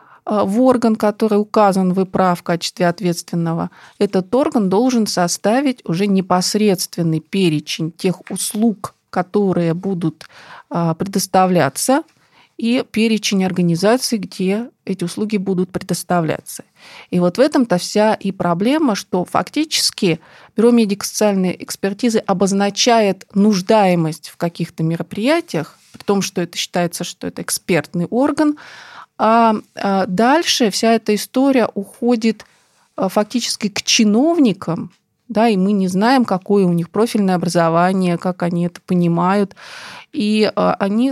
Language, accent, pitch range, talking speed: Russian, native, 180-225 Hz, 115 wpm